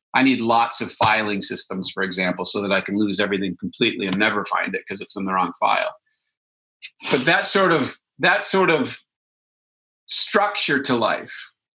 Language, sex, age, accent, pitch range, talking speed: English, male, 40-59, American, 110-150 Hz, 180 wpm